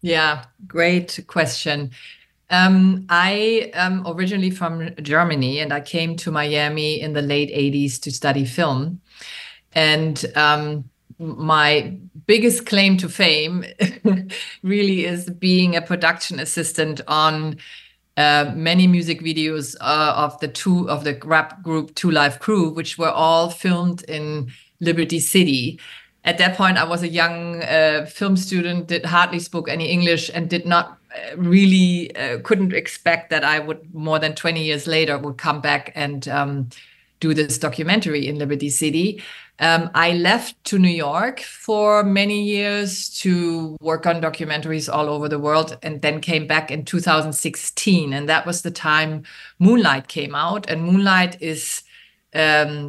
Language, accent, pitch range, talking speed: English, German, 150-180 Hz, 150 wpm